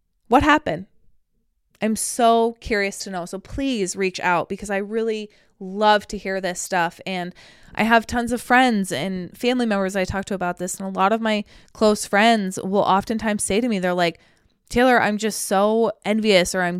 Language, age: English, 20-39